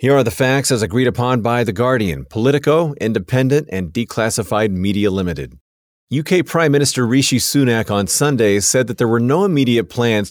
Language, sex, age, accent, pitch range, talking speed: English, male, 40-59, American, 100-125 Hz, 175 wpm